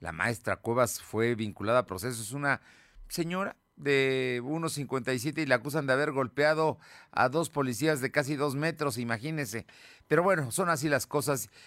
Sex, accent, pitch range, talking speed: male, Mexican, 100-140 Hz, 165 wpm